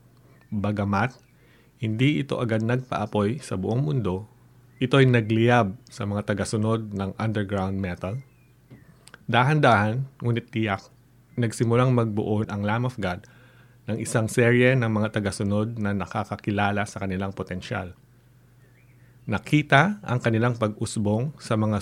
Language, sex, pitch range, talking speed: English, male, 105-125 Hz, 115 wpm